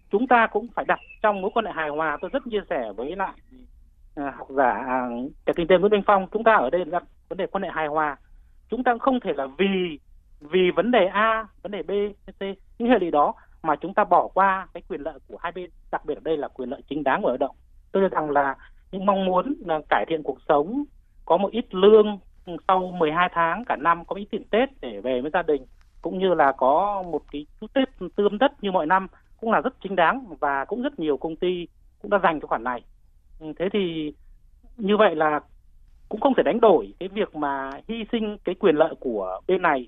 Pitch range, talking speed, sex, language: 150-210 Hz, 240 wpm, male, Vietnamese